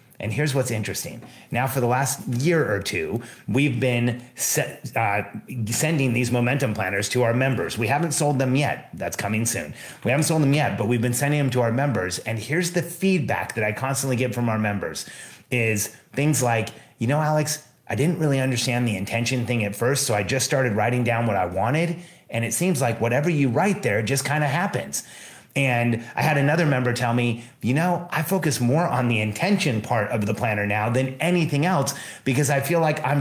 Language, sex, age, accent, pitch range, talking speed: English, male, 30-49, American, 115-145 Hz, 210 wpm